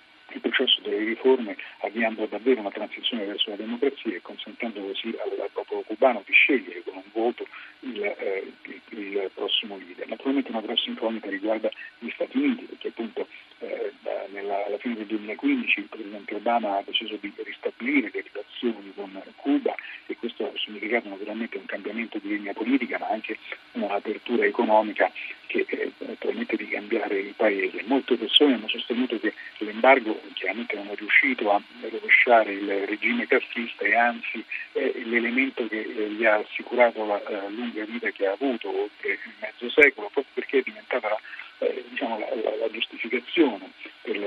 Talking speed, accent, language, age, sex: 155 wpm, native, Italian, 40-59, male